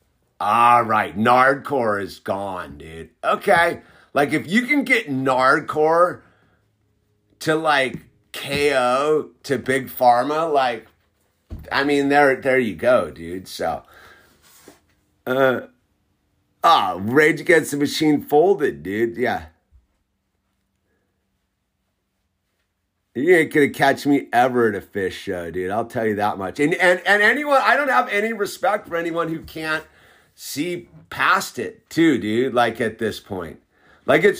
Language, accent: English, American